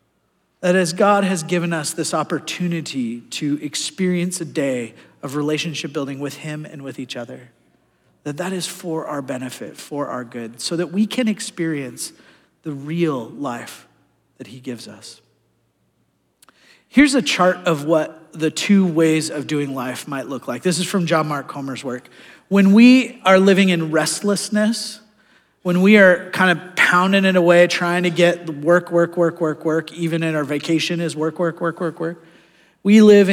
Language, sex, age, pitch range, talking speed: English, male, 40-59, 155-190 Hz, 175 wpm